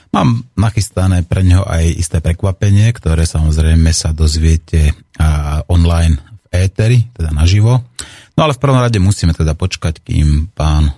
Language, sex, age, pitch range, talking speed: Slovak, male, 30-49, 80-95 Hz, 140 wpm